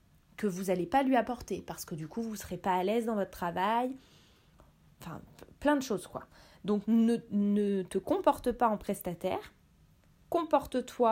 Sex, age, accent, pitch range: female, 20-39, French, 185-245 Hz